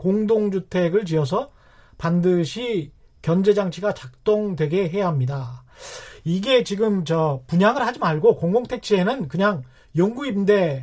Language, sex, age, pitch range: Korean, male, 40-59, 165-220 Hz